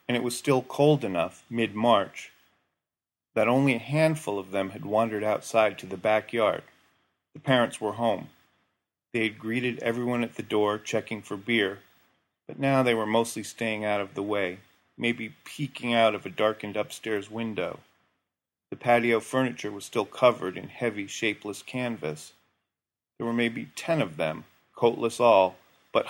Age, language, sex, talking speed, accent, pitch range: 40-59, English, male, 160 wpm, American, 105-120 Hz